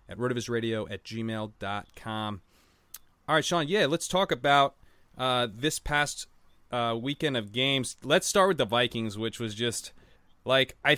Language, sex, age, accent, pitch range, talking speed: English, male, 20-39, American, 105-130 Hz, 170 wpm